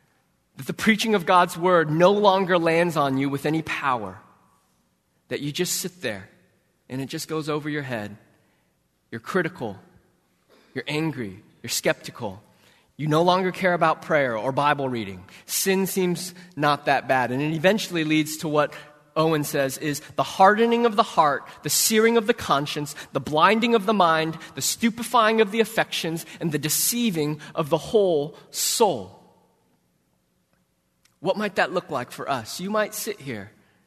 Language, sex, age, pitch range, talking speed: English, male, 20-39, 130-180 Hz, 165 wpm